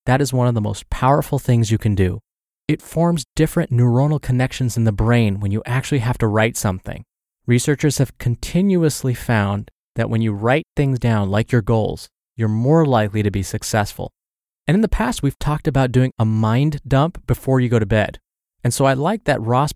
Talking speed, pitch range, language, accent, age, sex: 205 wpm, 115-140 Hz, English, American, 20-39, male